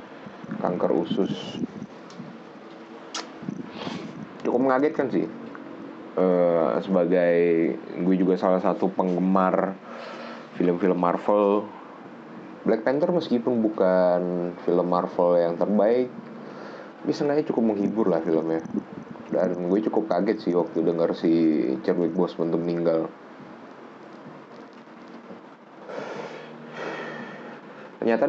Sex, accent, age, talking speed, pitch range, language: male, native, 20-39, 85 wpm, 85-100 Hz, Indonesian